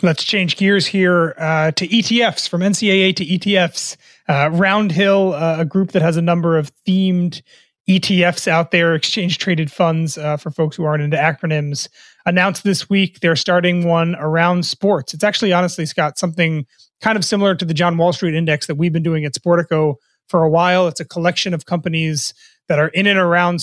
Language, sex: English, male